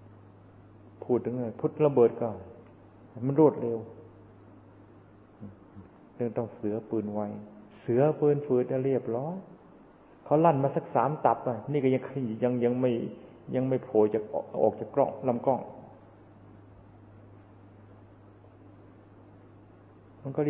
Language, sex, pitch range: Thai, male, 105-135 Hz